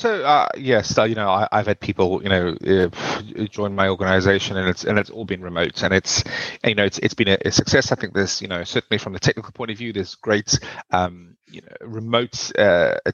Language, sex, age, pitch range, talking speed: English, male, 30-49, 100-120 Hz, 245 wpm